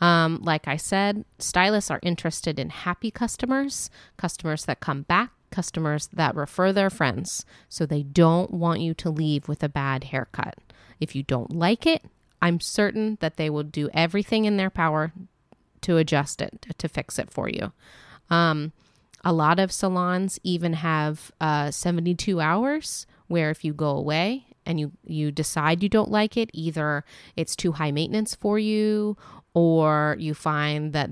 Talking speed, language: 170 wpm, English